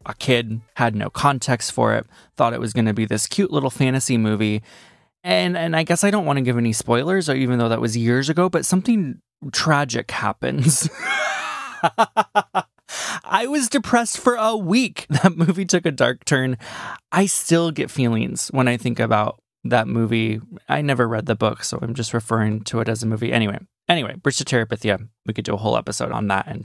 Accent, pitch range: American, 110-145 Hz